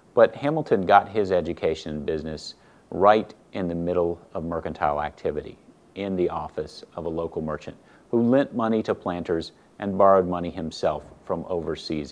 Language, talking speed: English, 160 wpm